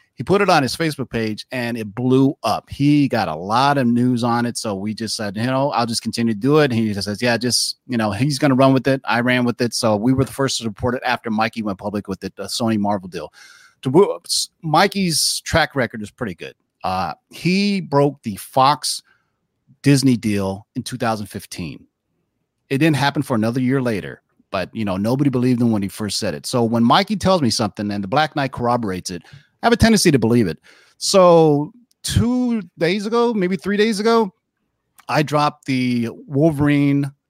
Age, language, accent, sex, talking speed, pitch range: 30-49, English, American, male, 210 wpm, 110-145 Hz